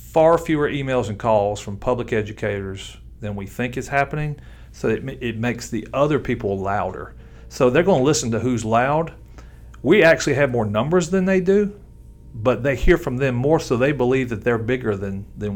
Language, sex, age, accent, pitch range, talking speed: English, male, 40-59, American, 105-145 Hz, 195 wpm